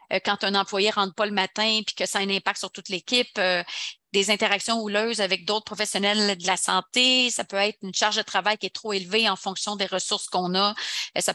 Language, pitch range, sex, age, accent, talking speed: French, 195-220 Hz, female, 40-59, Canadian, 235 wpm